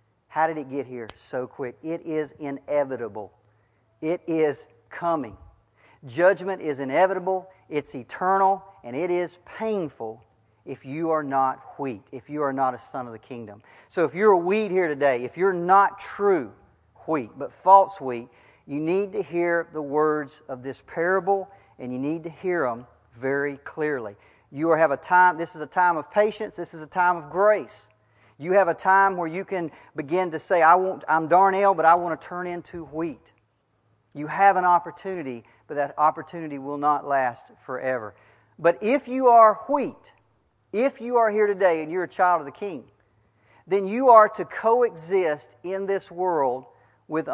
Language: English